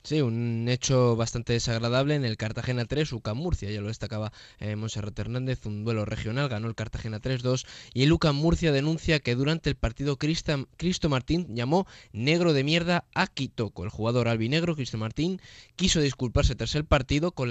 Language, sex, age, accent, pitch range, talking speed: Spanish, male, 20-39, Spanish, 115-150 Hz, 185 wpm